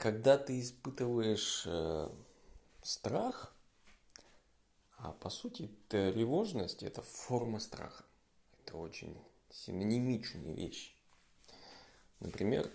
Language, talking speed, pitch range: Russian, 75 wpm, 105-125 Hz